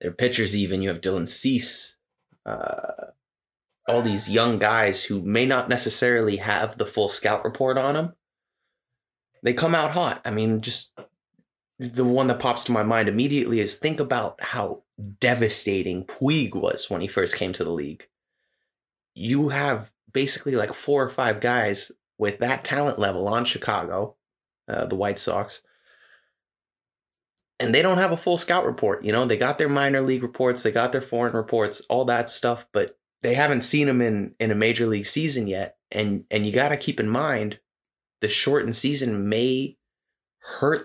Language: English